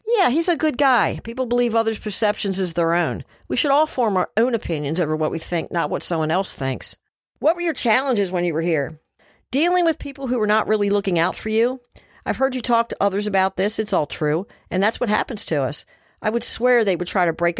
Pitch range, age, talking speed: 165-235 Hz, 50-69, 245 wpm